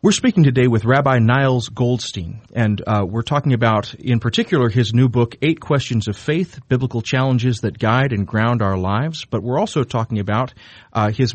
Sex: male